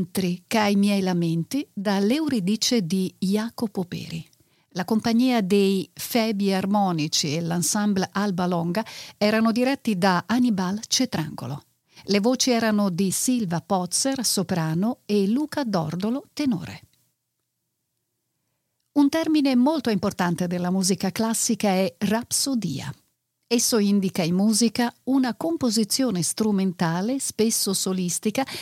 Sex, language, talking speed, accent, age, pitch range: female, Italian, 105 wpm, native, 50-69, 185-245 Hz